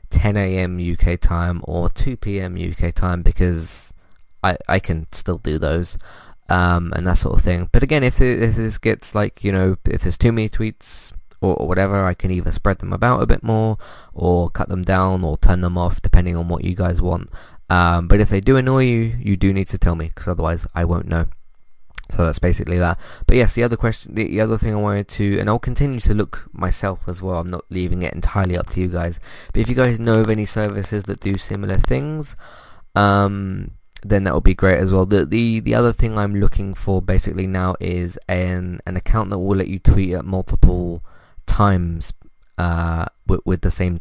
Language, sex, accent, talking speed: English, male, British, 220 wpm